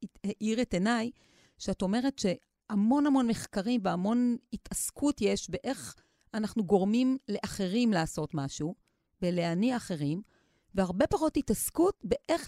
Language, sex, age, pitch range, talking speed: Hebrew, female, 40-59, 185-250 Hz, 110 wpm